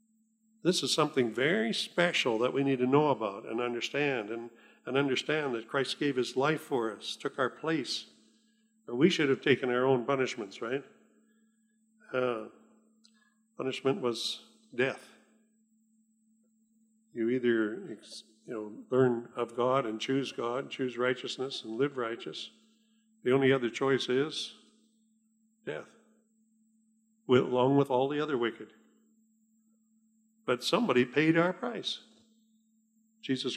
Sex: male